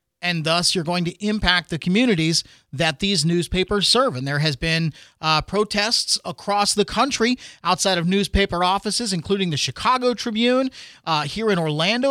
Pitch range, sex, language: 165-215 Hz, male, English